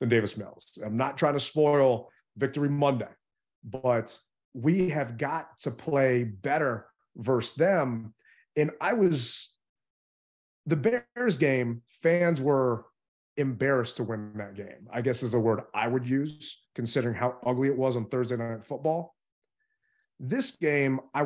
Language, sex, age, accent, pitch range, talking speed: English, male, 30-49, American, 120-155 Hz, 145 wpm